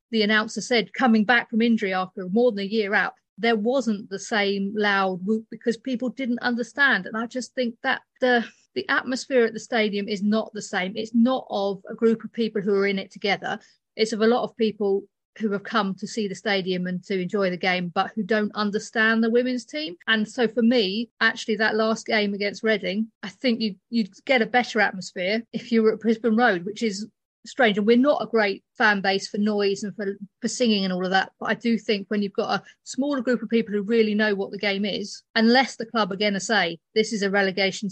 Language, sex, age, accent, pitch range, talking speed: English, female, 40-59, British, 195-230 Hz, 235 wpm